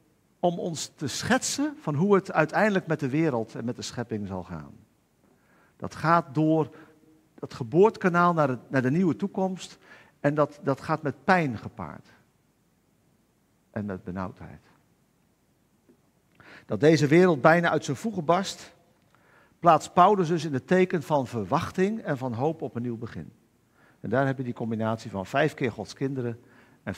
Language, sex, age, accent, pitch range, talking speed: Dutch, male, 50-69, Dutch, 110-155 Hz, 160 wpm